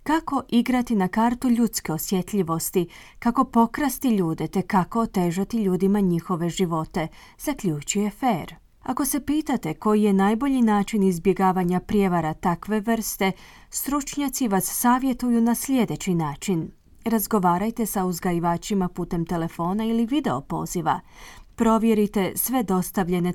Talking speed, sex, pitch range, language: 115 wpm, female, 180-230 Hz, Croatian